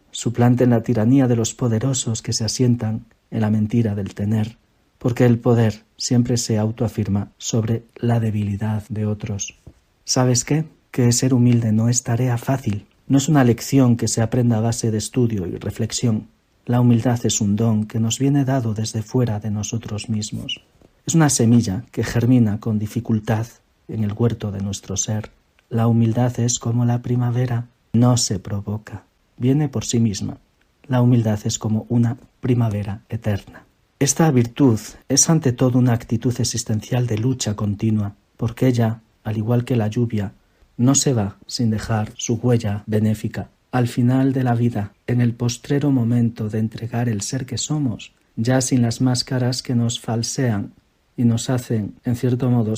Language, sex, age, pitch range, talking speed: Spanish, male, 50-69, 110-125 Hz, 170 wpm